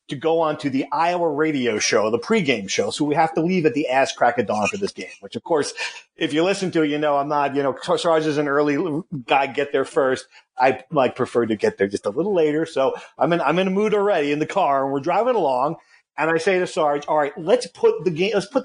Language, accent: English, American